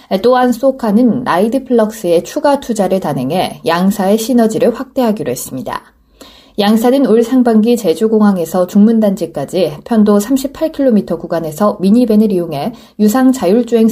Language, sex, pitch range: Korean, female, 195-245 Hz